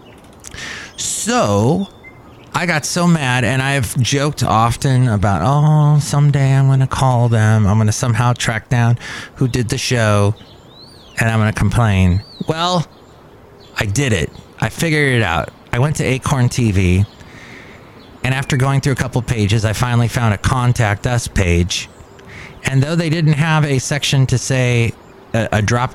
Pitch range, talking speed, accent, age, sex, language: 105-135 Hz, 165 wpm, American, 30-49, male, English